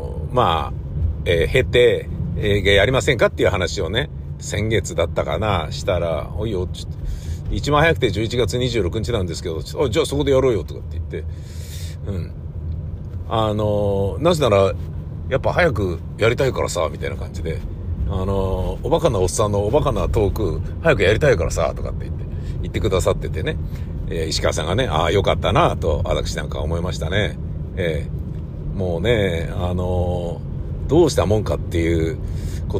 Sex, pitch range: male, 80-115 Hz